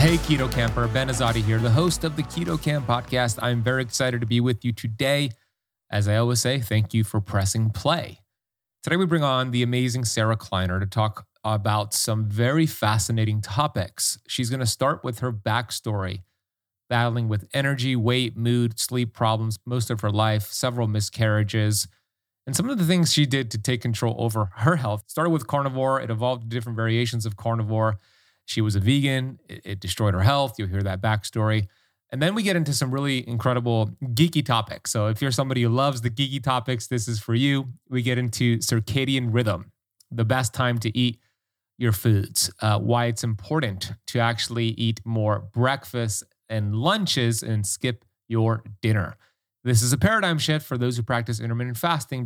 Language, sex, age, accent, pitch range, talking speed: English, male, 30-49, American, 110-130 Hz, 185 wpm